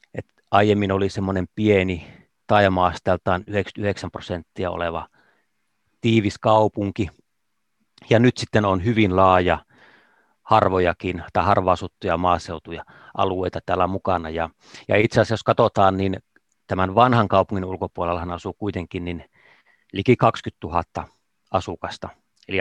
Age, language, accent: 30-49, Finnish, native